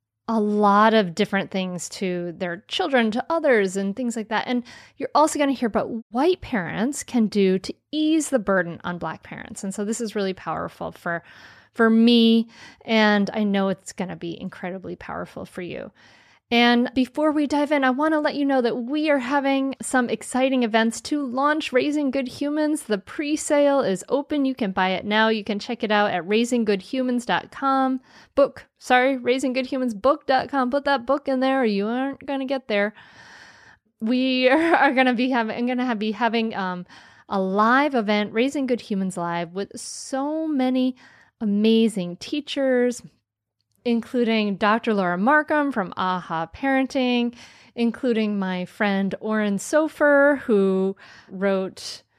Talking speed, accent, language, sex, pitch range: 160 wpm, American, English, female, 205-270 Hz